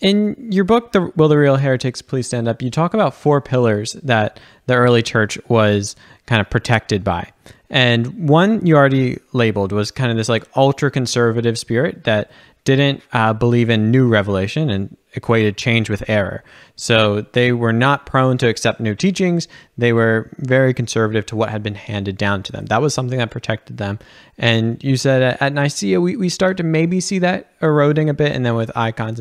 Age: 20-39